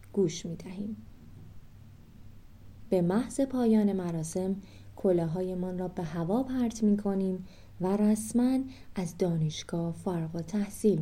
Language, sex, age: Persian, female, 20-39